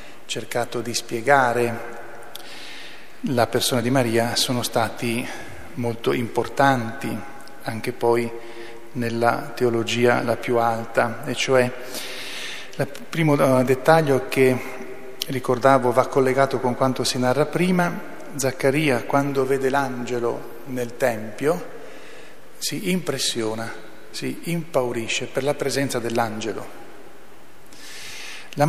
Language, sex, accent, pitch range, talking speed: Italian, male, native, 120-145 Hz, 100 wpm